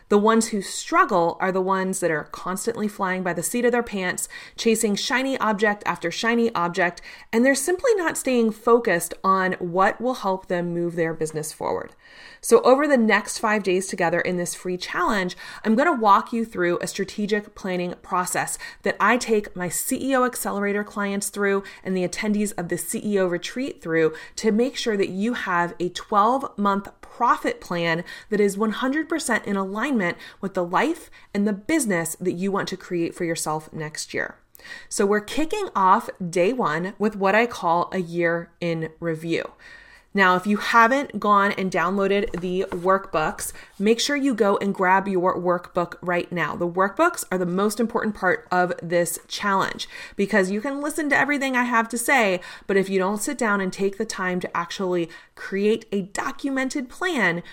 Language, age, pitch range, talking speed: English, 30-49, 175-230 Hz, 180 wpm